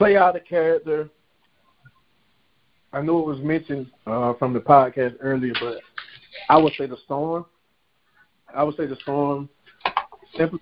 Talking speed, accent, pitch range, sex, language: 145 wpm, American, 130-150 Hz, male, English